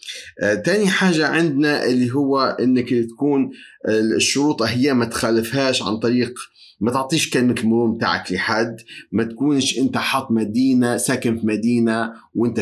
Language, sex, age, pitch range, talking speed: Arabic, male, 30-49, 115-130 Hz, 145 wpm